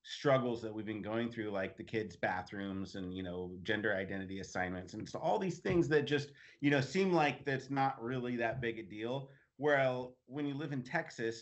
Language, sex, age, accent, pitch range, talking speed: English, male, 30-49, American, 110-140 Hz, 210 wpm